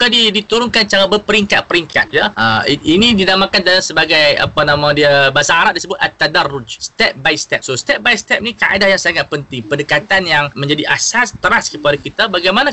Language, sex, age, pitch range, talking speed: Malay, male, 20-39, 135-185 Hz, 170 wpm